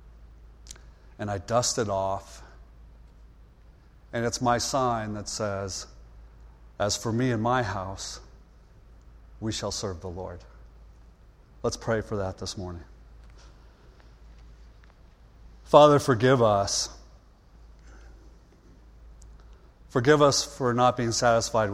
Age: 40-59